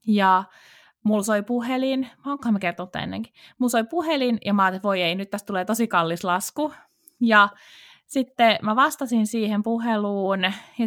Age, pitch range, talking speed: 20-39, 185-235 Hz, 160 wpm